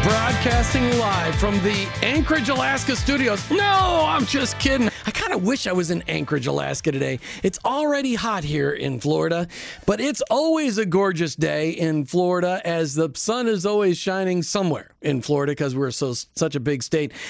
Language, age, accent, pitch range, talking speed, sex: English, 40-59, American, 170-245 Hz, 175 wpm, male